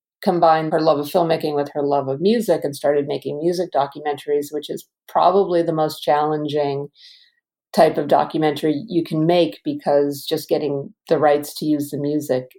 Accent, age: American, 50-69